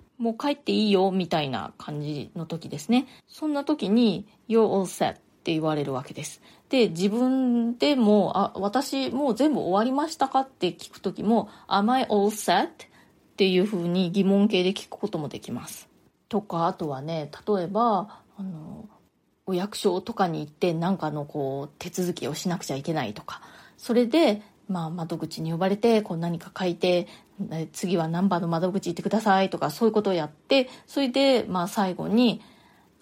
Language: Japanese